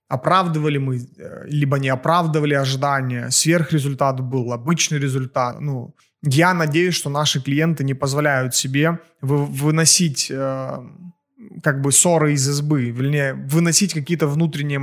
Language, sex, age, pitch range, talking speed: Russian, male, 20-39, 140-165 Hz, 115 wpm